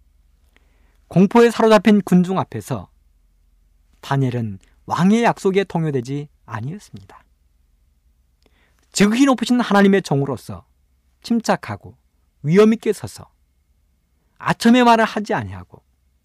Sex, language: male, Korean